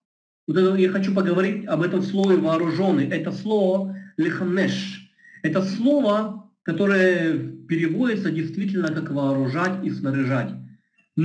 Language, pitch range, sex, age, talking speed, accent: Russian, 160-215 Hz, male, 40-59, 100 wpm, native